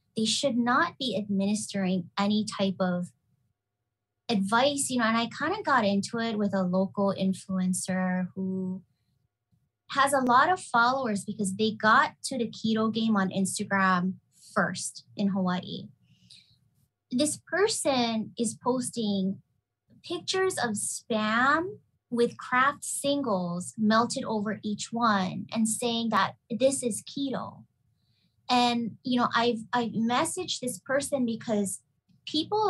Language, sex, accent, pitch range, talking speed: English, female, American, 195-255 Hz, 130 wpm